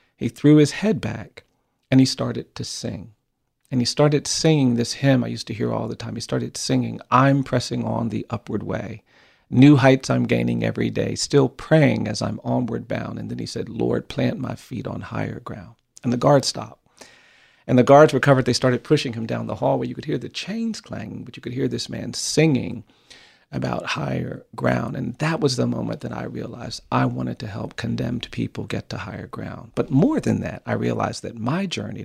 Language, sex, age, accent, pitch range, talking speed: English, male, 40-59, American, 110-140 Hz, 210 wpm